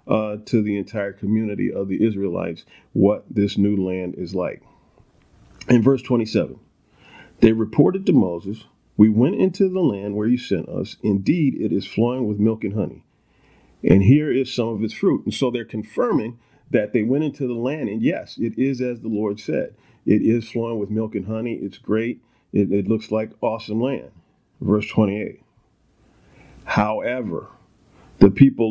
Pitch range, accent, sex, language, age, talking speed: 105-125 Hz, American, male, English, 40-59, 175 wpm